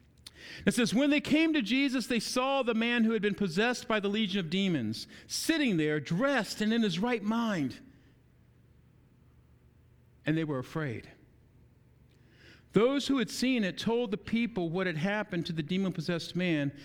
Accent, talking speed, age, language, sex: American, 165 wpm, 50-69, English, male